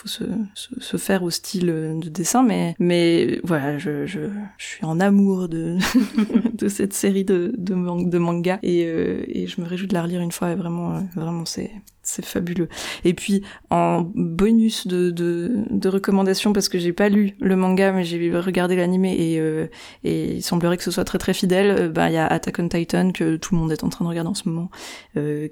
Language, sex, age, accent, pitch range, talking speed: French, female, 20-39, French, 170-195 Hz, 220 wpm